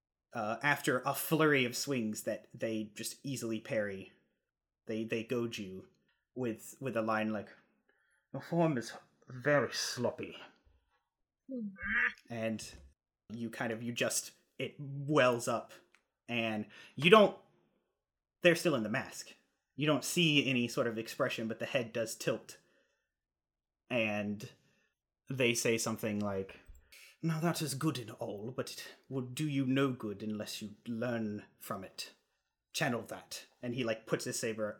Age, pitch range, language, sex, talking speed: 30-49, 110-135 Hz, English, male, 145 wpm